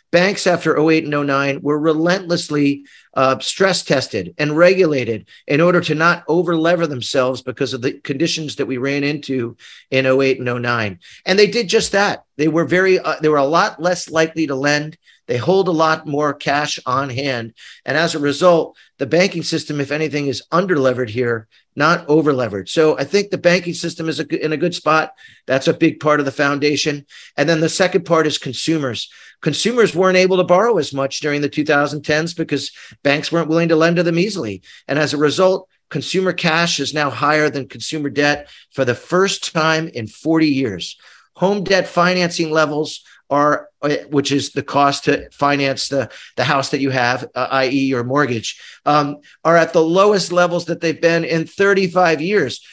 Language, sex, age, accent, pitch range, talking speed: English, male, 40-59, American, 140-170 Hz, 190 wpm